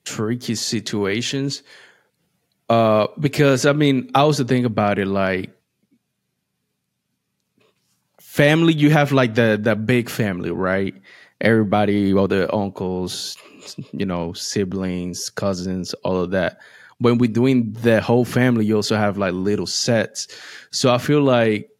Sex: male